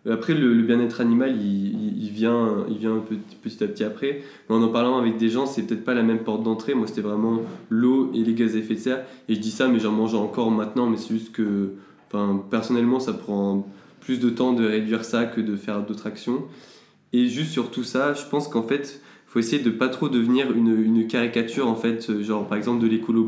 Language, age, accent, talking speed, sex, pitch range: French, 20-39, French, 235 wpm, male, 110-125 Hz